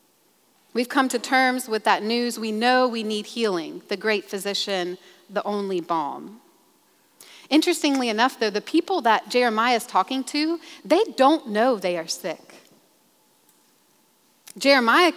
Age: 40-59